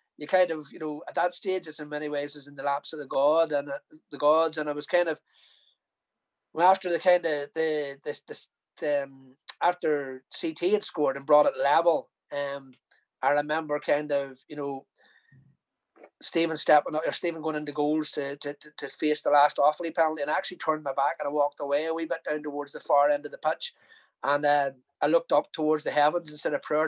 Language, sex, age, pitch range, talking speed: English, male, 30-49, 145-165 Hz, 230 wpm